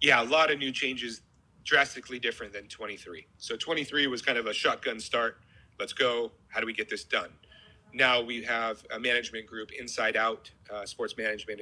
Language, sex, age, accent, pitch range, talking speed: English, male, 30-49, American, 105-120 Hz, 190 wpm